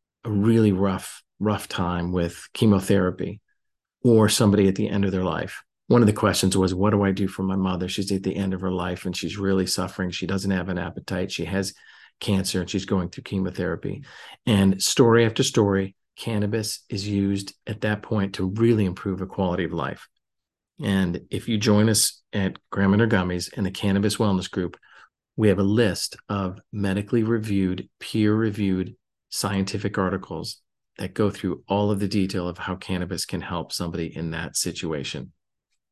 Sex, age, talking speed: male, 40-59, 180 wpm